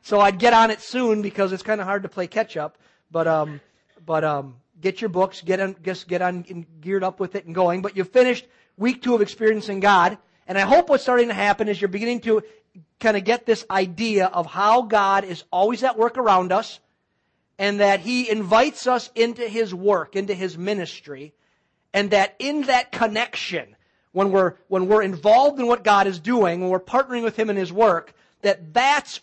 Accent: American